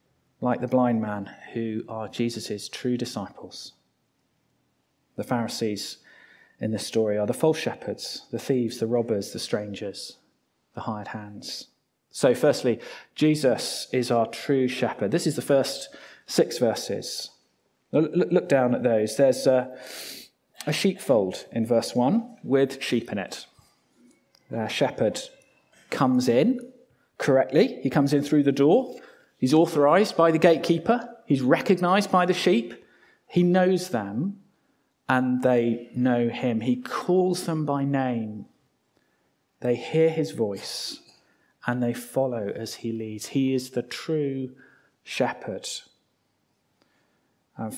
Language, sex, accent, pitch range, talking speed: English, male, British, 115-165 Hz, 130 wpm